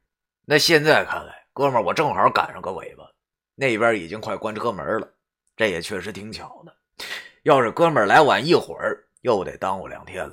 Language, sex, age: Chinese, male, 30-49